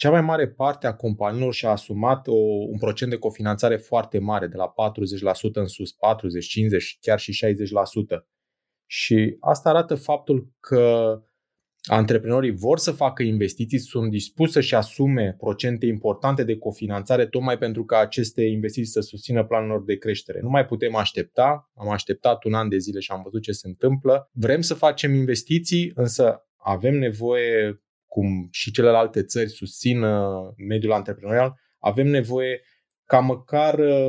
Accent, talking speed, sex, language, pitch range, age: native, 155 wpm, male, Romanian, 105-135 Hz, 20-39